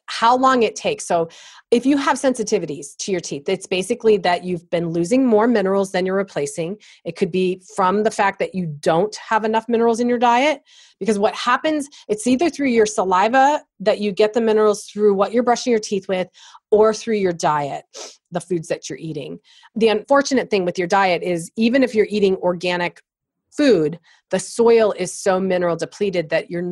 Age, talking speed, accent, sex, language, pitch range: 30-49, 200 wpm, American, female, English, 170-215 Hz